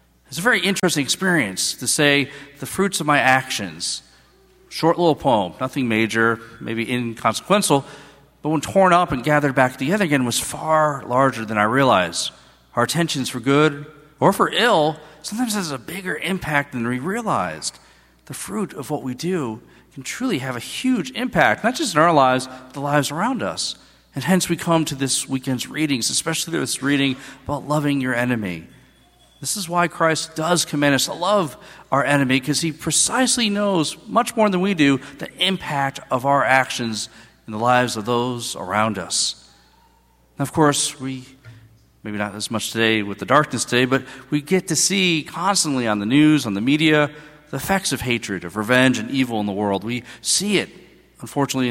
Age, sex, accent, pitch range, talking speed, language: 40-59, male, American, 120-160 Hz, 180 wpm, English